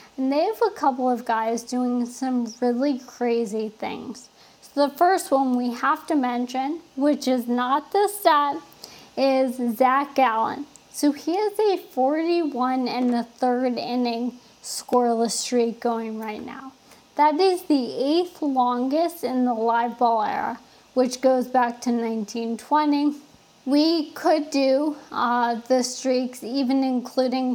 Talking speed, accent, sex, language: 140 wpm, American, female, English